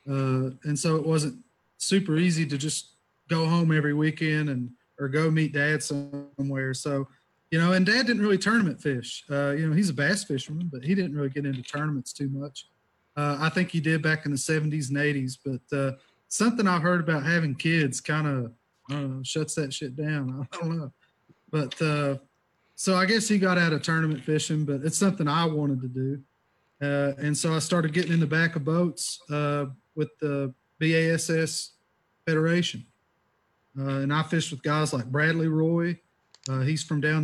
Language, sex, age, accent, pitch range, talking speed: English, male, 30-49, American, 140-170 Hz, 190 wpm